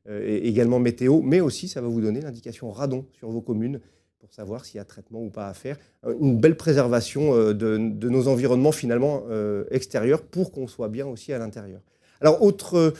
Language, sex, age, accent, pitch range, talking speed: French, male, 30-49, French, 115-140 Hz, 195 wpm